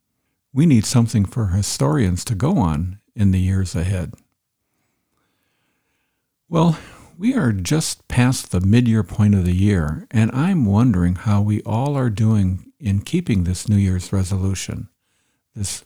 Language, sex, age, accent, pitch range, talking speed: English, male, 60-79, American, 100-130 Hz, 145 wpm